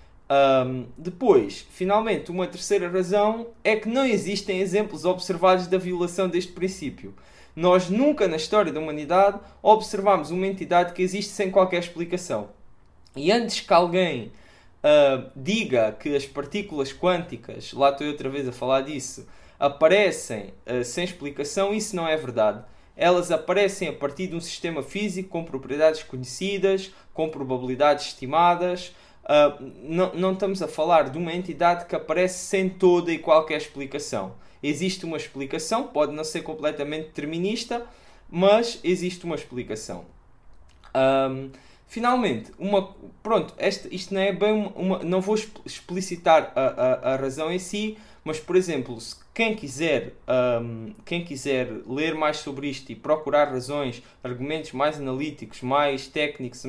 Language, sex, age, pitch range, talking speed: Portuguese, male, 20-39, 140-190 Hz, 140 wpm